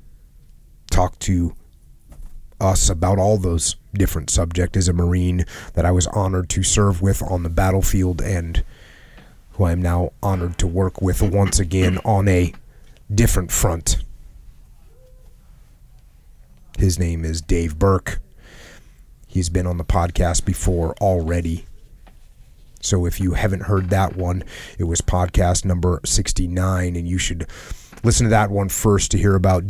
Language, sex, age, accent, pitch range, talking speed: English, male, 30-49, American, 85-100 Hz, 145 wpm